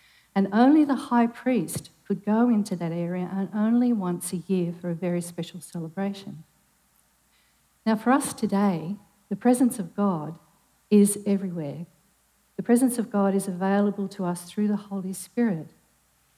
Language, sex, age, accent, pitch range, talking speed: English, female, 50-69, Australian, 175-215 Hz, 155 wpm